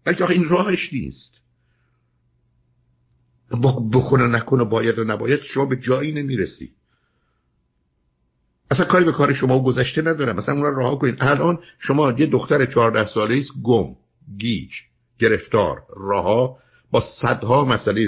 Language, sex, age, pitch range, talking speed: Persian, male, 50-69, 100-140 Hz, 130 wpm